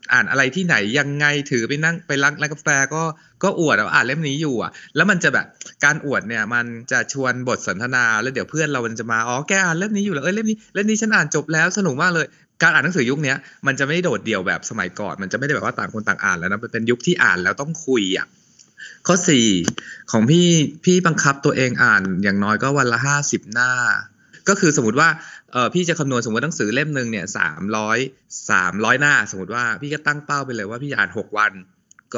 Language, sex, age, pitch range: Thai, male, 20-39, 125-165 Hz